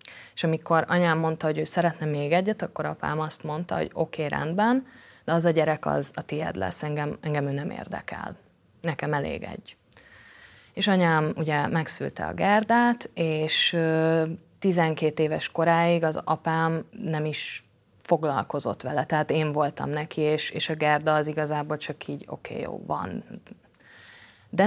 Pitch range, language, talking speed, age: 150-180 Hz, Hungarian, 155 wpm, 30-49